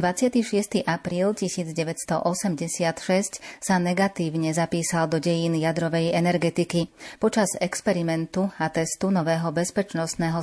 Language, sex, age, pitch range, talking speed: Slovak, female, 30-49, 165-185 Hz, 90 wpm